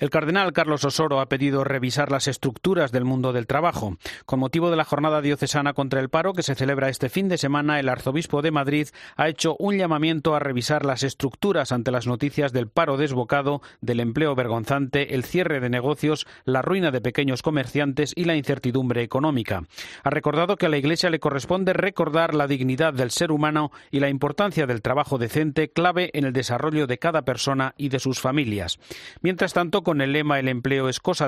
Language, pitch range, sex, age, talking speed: Spanish, 130-155 Hz, male, 40-59, 200 wpm